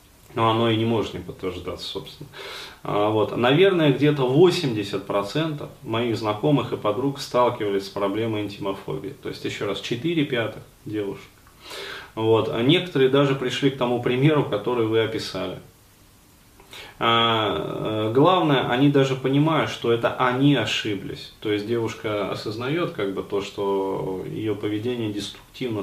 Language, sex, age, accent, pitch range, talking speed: Russian, male, 20-39, native, 100-130 Hz, 130 wpm